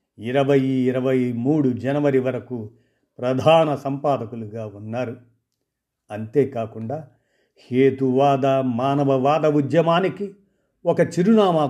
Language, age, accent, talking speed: Telugu, 50-69, native, 70 wpm